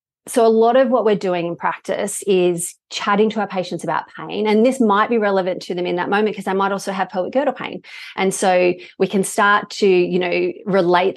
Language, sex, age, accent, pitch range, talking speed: English, female, 30-49, Australian, 180-210 Hz, 230 wpm